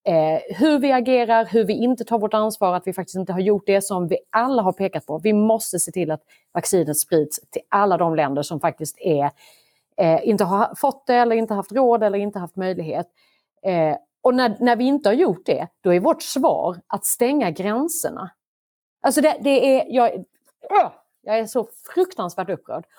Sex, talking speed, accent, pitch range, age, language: female, 200 wpm, native, 165-215 Hz, 30-49, Swedish